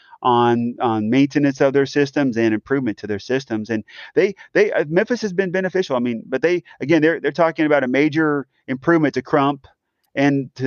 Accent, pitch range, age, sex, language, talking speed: American, 115-140 Hz, 30-49, male, English, 195 wpm